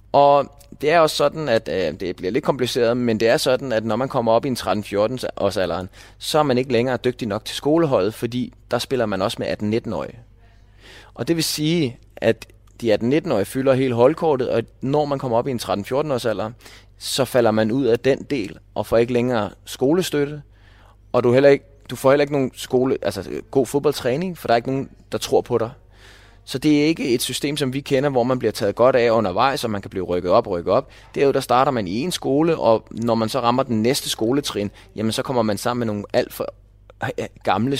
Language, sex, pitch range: Danish, male, 105-135 Hz